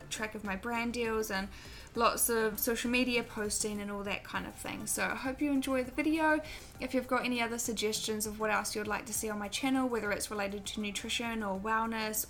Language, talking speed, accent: English, 230 wpm, Australian